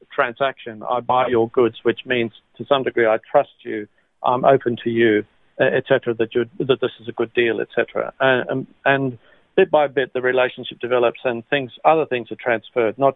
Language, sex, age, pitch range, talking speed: English, male, 50-69, 115-135 Hz, 195 wpm